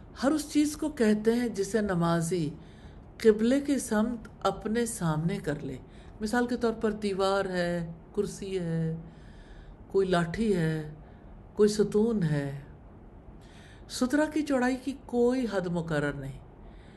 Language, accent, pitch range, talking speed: English, Indian, 145-235 Hz, 130 wpm